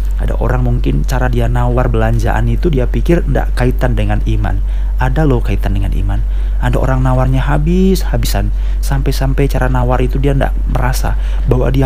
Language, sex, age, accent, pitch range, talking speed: Indonesian, male, 30-49, native, 105-130 Hz, 160 wpm